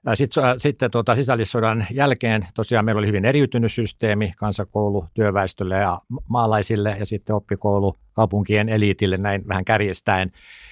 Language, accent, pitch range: Finnish, native, 95-115 Hz